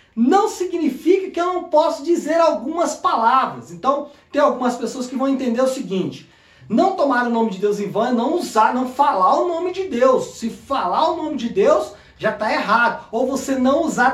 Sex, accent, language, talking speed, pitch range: male, Brazilian, Portuguese, 205 wpm, 225-310 Hz